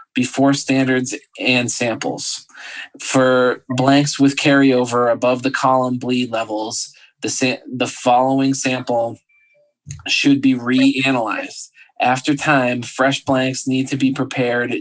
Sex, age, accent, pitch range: male, 20-39, American, 125-140 Hz